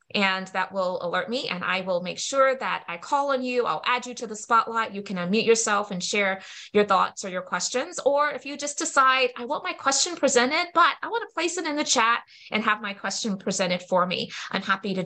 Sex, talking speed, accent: female, 245 wpm, American